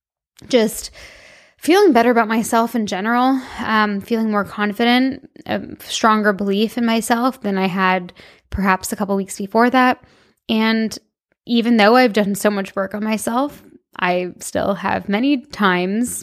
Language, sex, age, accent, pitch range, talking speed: English, female, 10-29, American, 195-235 Hz, 150 wpm